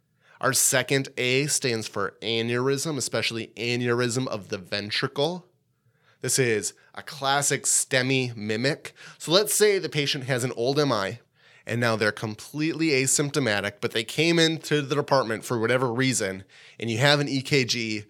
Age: 20-39